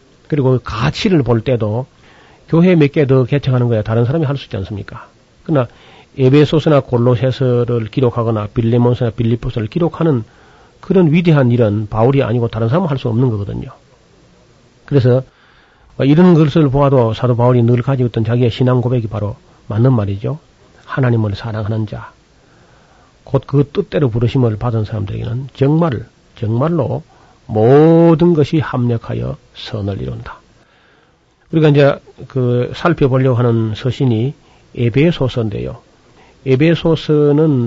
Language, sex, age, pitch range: Korean, male, 40-59, 115-145 Hz